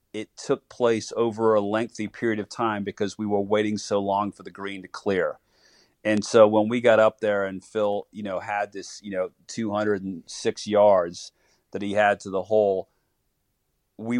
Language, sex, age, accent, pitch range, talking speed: English, male, 40-59, American, 100-110 Hz, 185 wpm